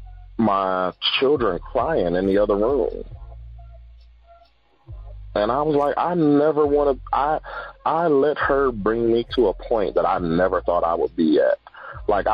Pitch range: 95-145 Hz